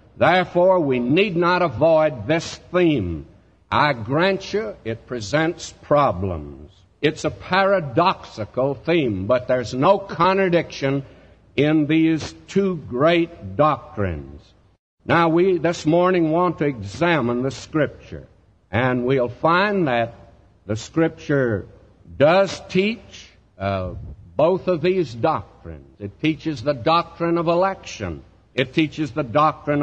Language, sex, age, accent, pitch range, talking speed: English, male, 60-79, American, 115-170 Hz, 115 wpm